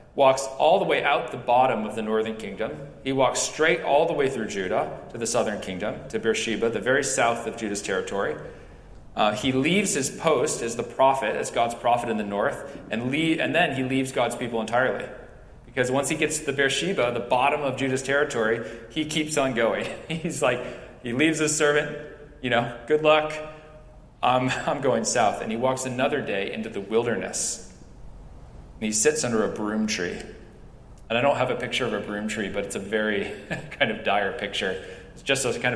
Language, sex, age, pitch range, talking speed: English, male, 40-59, 100-135 Hz, 205 wpm